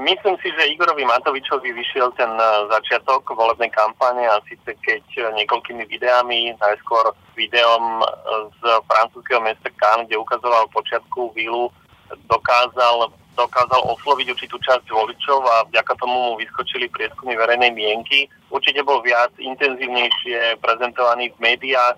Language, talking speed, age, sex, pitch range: Slovak, 125 wpm, 30-49, male, 115-125 Hz